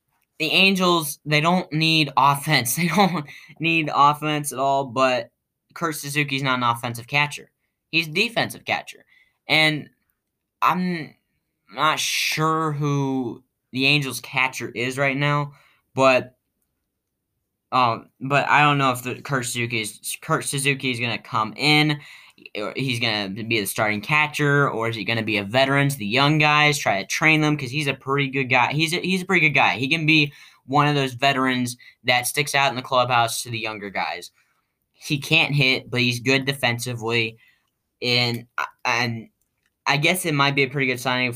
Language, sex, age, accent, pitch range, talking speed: English, male, 10-29, American, 120-150 Hz, 175 wpm